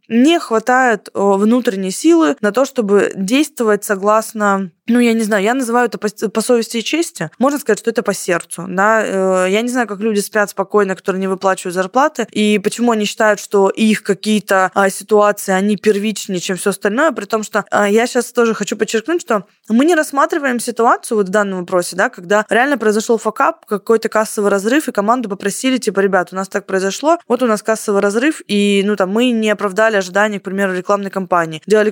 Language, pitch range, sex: Russian, 200-240 Hz, female